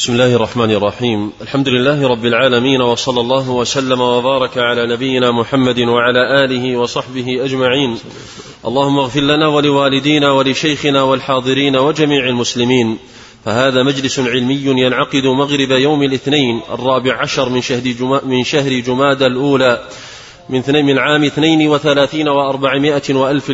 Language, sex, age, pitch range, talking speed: Arabic, male, 30-49, 130-150 Hz, 120 wpm